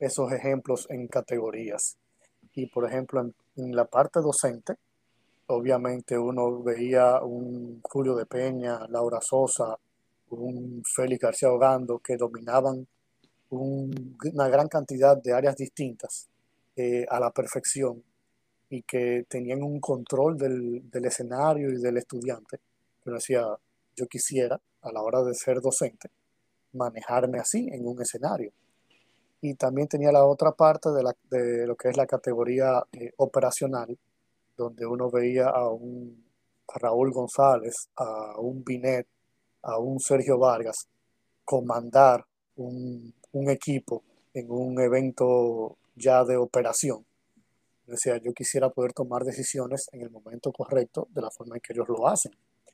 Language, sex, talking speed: Spanish, male, 140 wpm